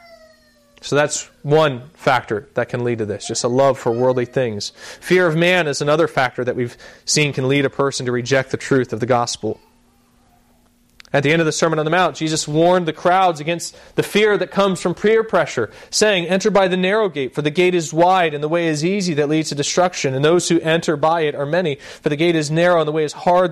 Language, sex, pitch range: English, male, 125-155 Hz